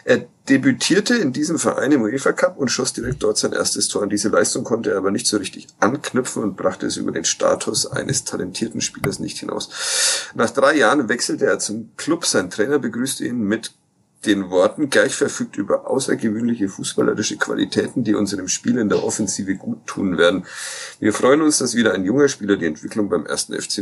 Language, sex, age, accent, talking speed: German, male, 40-59, German, 195 wpm